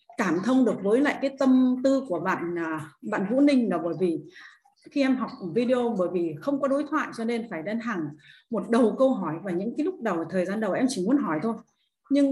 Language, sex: Vietnamese, female